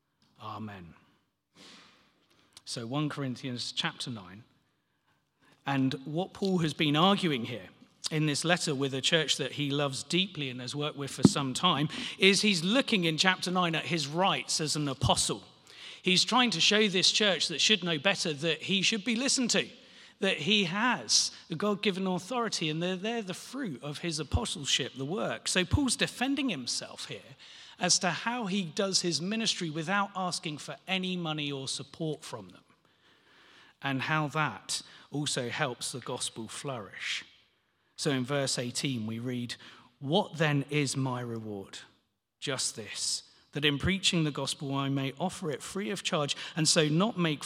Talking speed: 165 wpm